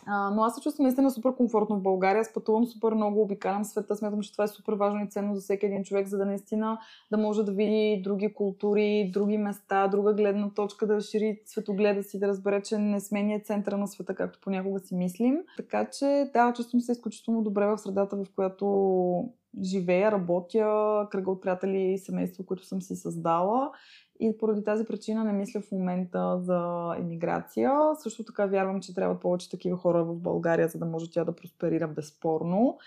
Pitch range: 185-220 Hz